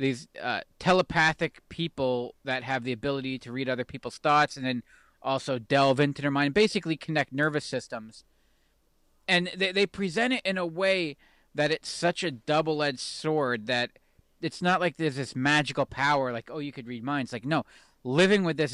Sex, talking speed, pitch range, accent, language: male, 185 wpm, 125-160 Hz, American, English